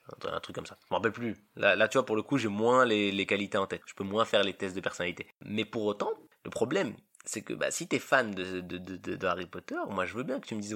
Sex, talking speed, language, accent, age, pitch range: male, 310 wpm, French, French, 20-39, 110-155 Hz